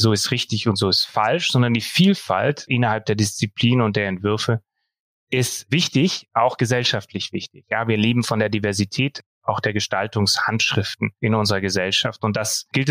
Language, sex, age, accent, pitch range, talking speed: German, male, 30-49, German, 110-135 Hz, 165 wpm